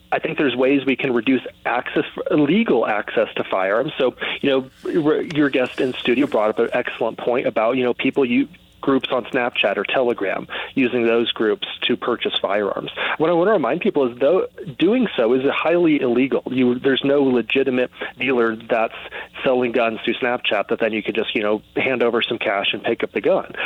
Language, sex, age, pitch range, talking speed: English, male, 30-49, 120-140 Hz, 195 wpm